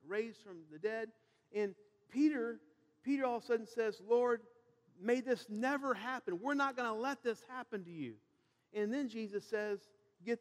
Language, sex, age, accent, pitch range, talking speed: English, male, 50-69, American, 195-260 Hz, 180 wpm